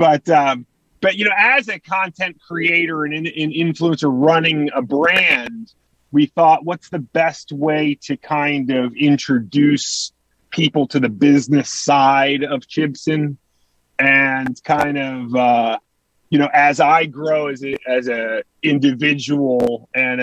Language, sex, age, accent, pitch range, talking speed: English, male, 30-49, American, 130-160 Hz, 140 wpm